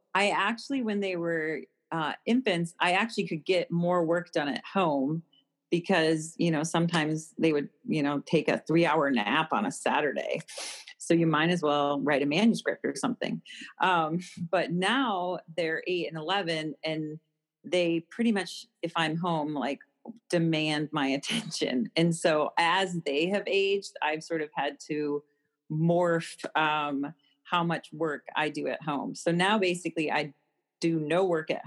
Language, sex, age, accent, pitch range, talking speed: English, female, 40-59, American, 150-175 Hz, 165 wpm